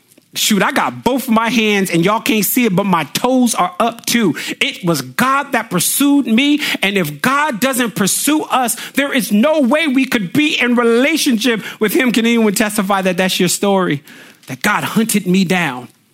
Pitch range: 185-245 Hz